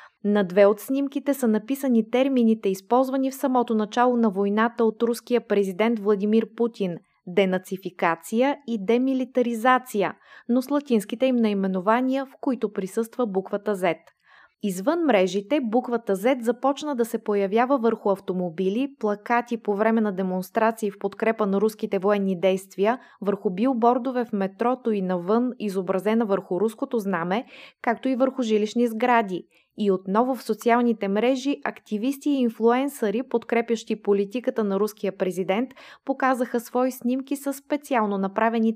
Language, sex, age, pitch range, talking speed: Bulgarian, female, 20-39, 205-250 Hz, 135 wpm